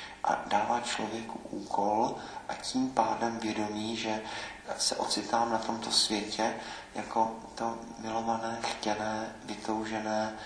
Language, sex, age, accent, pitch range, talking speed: Czech, male, 40-59, native, 105-115 Hz, 110 wpm